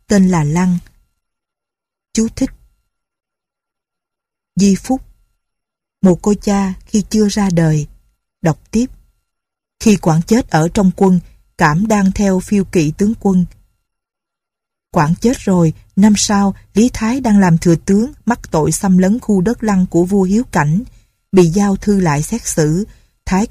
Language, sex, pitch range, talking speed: Vietnamese, female, 165-210 Hz, 150 wpm